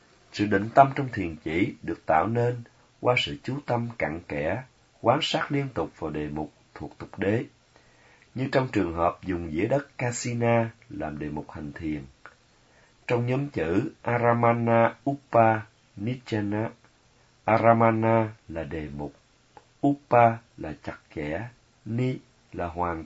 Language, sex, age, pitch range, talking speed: Vietnamese, male, 30-49, 100-130 Hz, 145 wpm